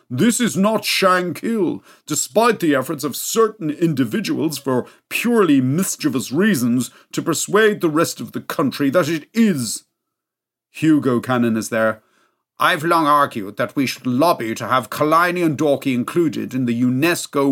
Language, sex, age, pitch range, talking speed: English, male, 50-69, 125-175 Hz, 150 wpm